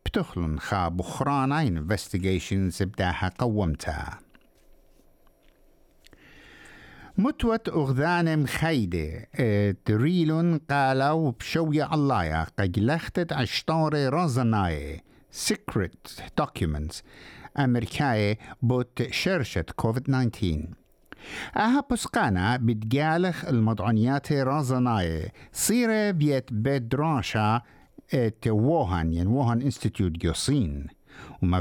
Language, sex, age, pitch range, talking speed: English, male, 60-79, 105-155 Hz, 55 wpm